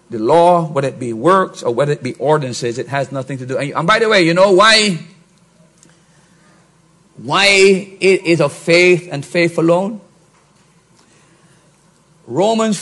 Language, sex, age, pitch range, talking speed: English, male, 50-69, 160-185 Hz, 150 wpm